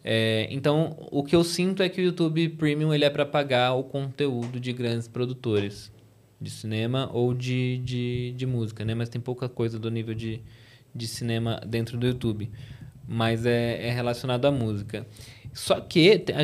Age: 20-39